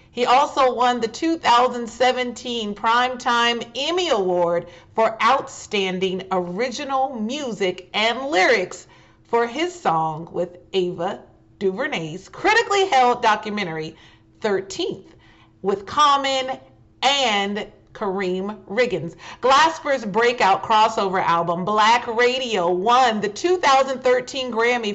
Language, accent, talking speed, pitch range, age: English, American, 95 wpm, 195-255 Hz, 40-59